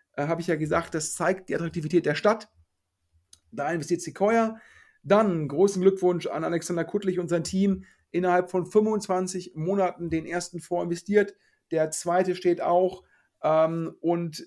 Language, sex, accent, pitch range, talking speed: German, male, German, 160-185 Hz, 145 wpm